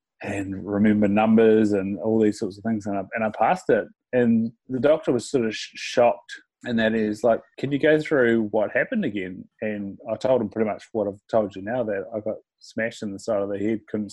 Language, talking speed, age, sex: English, 230 wpm, 20-39, male